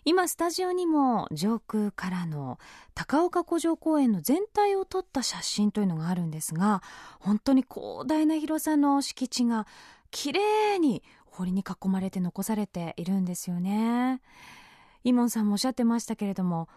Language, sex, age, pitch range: Japanese, female, 20-39, 200-290 Hz